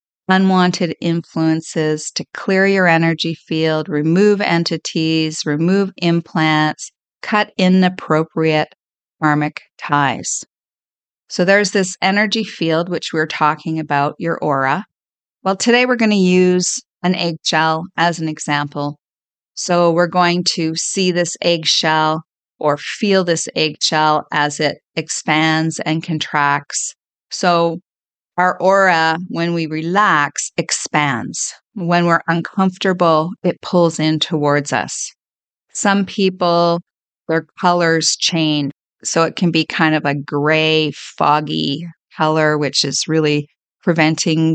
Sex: female